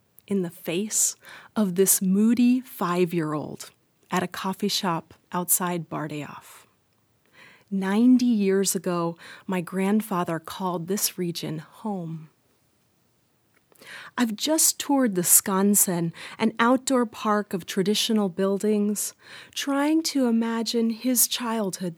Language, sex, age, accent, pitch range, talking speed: English, female, 30-49, American, 180-225 Hz, 105 wpm